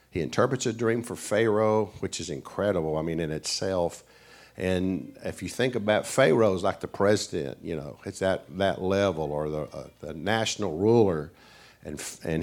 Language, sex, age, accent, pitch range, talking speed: English, male, 50-69, American, 95-145 Hz, 180 wpm